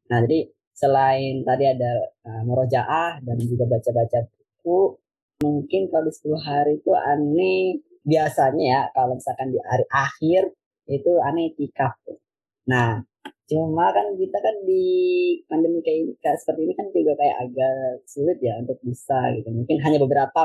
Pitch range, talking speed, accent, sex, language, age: 120-145 Hz, 145 wpm, native, female, Indonesian, 20-39